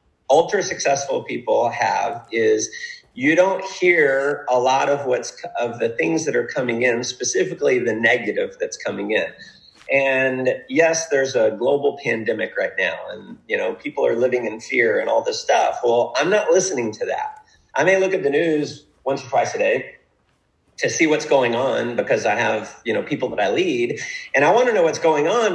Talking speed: 195 wpm